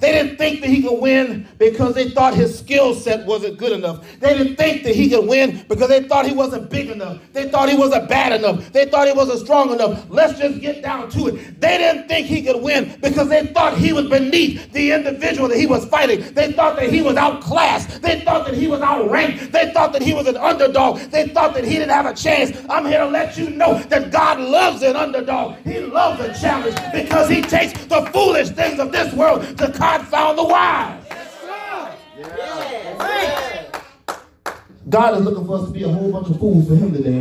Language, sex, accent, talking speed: English, male, American, 225 wpm